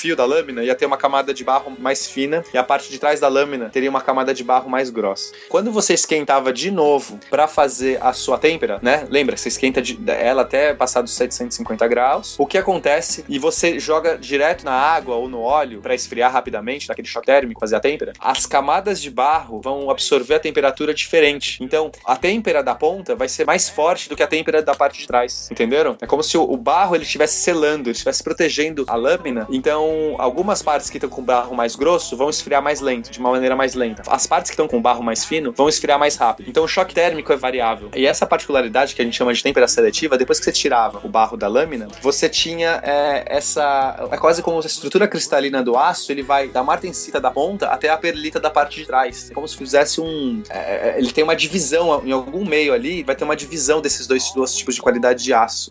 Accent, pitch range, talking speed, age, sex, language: Brazilian, 130-160 Hz, 230 wpm, 20-39, male, Portuguese